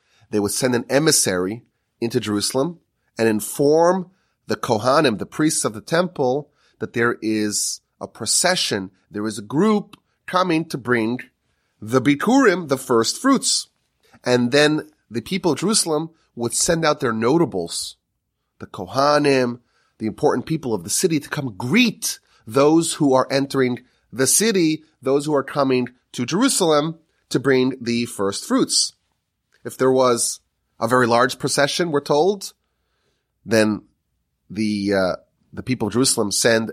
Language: English